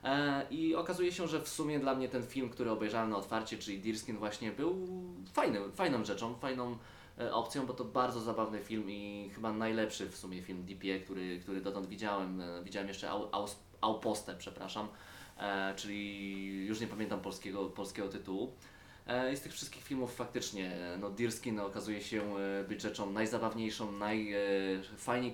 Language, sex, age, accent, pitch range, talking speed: Polish, male, 20-39, native, 100-125 Hz, 155 wpm